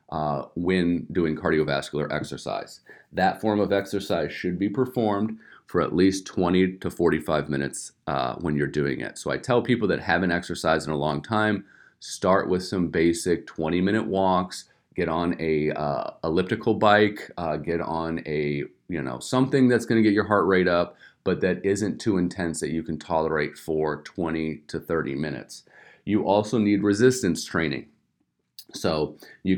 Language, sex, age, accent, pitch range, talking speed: English, male, 40-59, American, 80-105 Hz, 170 wpm